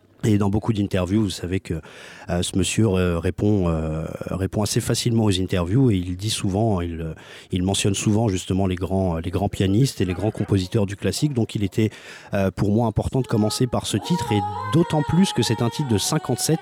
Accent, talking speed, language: French, 215 wpm, French